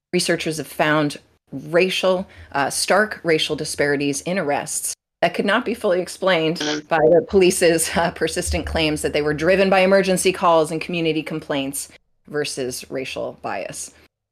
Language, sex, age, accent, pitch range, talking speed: English, female, 30-49, American, 145-185 Hz, 145 wpm